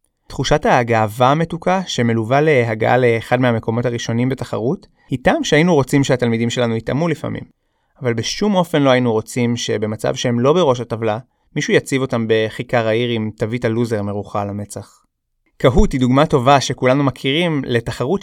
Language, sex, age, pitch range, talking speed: Hebrew, male, 20-39, 120-155 Hz, 150 wpm